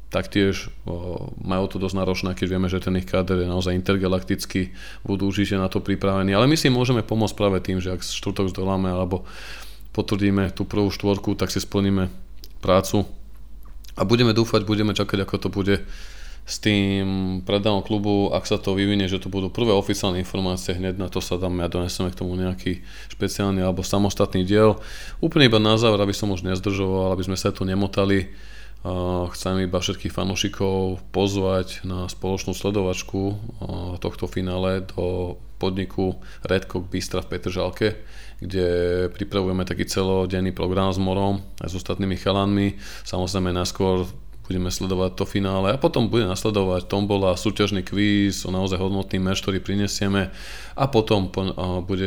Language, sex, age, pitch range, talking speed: Slovak, male, 20-39, 95-100 Hz, 160 wpm